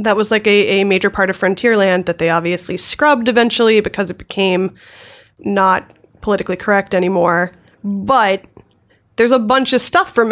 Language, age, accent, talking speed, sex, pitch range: English, 20-39, American, 165 wpm, female, 185-235 Hz